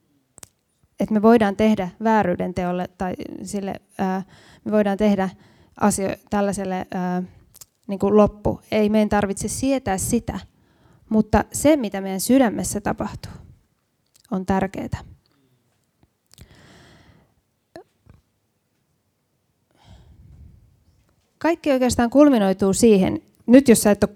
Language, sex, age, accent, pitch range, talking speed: Finnish, female, 20-39, native, 190-255 Hz, 85 wpm